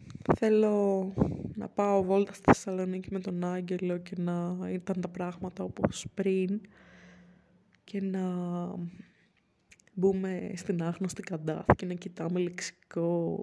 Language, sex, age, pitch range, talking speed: Greek, female, 20-39, 170-190 Hz, 115 wpm